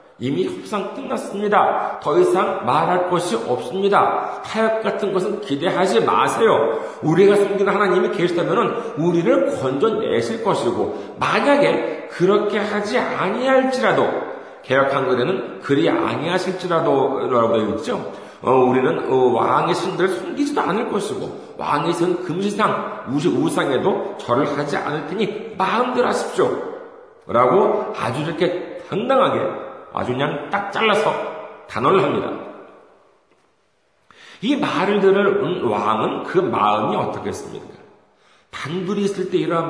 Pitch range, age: 175-285 Hz, 40-59